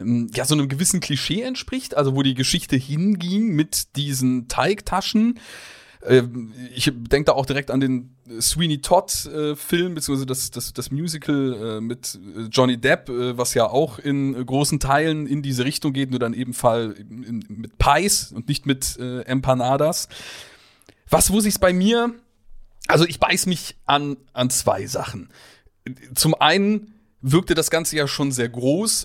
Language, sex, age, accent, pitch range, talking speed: German, male, 30-49, German, 130-165 Hz, 150 wpm